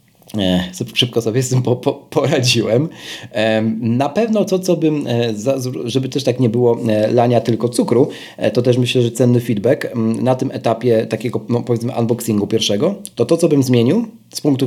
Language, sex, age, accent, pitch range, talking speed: Polish, male, 40-59, native, 120-155 Hz, 155 wpm